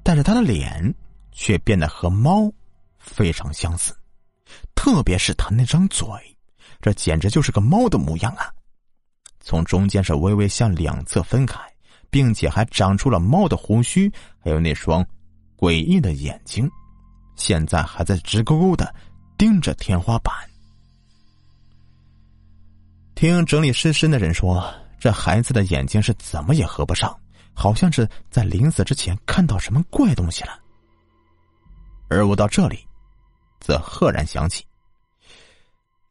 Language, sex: Chinese, male